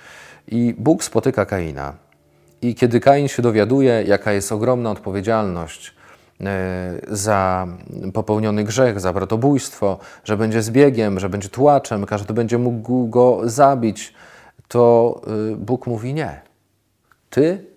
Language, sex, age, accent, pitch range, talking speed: Polish, male, 40-59, native, 100-125 Hz, 115 wpm